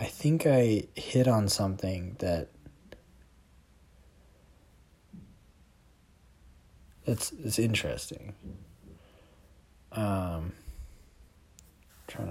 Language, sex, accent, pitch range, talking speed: English, male, American, 80-110 Hz, 60 wpm